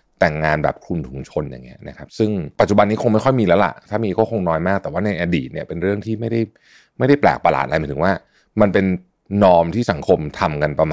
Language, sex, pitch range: Thai, male, 80-110 Hz